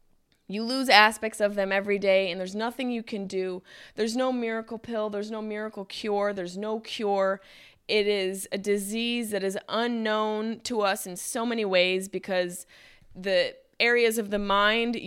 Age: 20-39